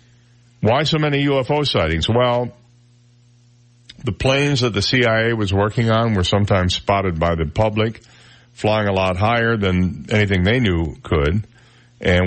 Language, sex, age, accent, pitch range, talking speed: English, male, 50-69, American, 90-120 Hz, 145 wpm